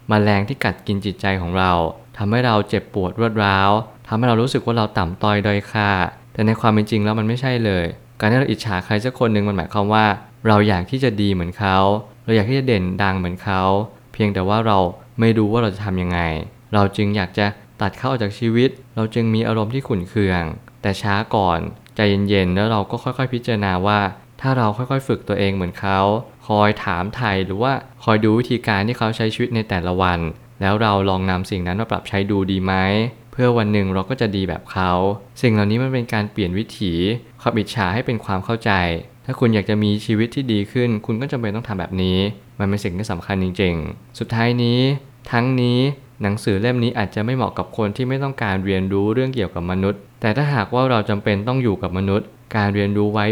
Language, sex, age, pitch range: Thai, male, 20-39, 100-120 Hz